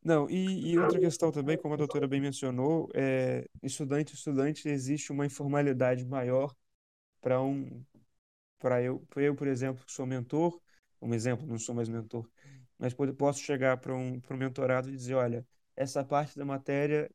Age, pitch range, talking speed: 20-39, 125-145 Hz, 165 wpm